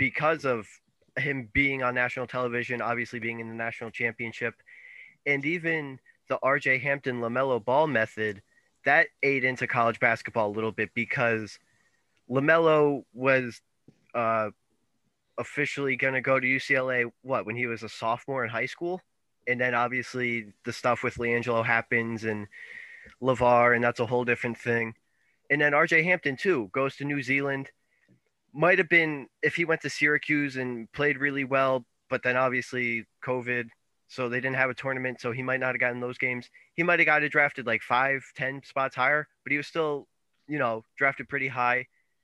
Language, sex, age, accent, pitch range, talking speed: English, male, 20-39, American, 120-140 Hz, 175 wpm